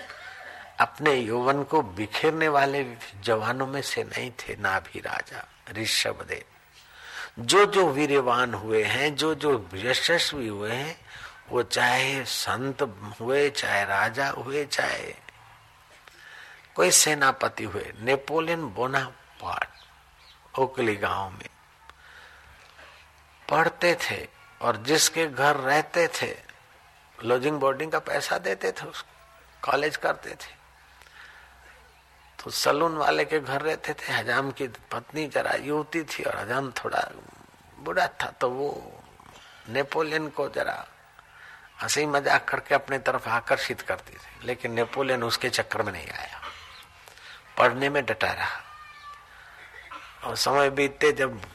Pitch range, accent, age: 120-150 Hz, native, 60-79